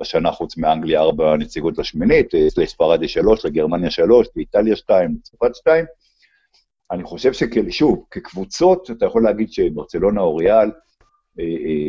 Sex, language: male, Hebrew